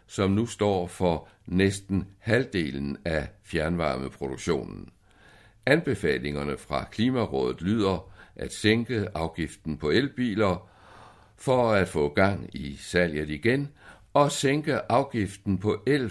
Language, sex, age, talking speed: Danish, male, 60-79, 110 wpm